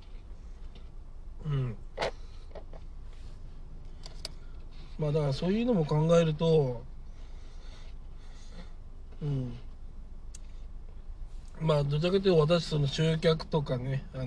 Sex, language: male, Japanese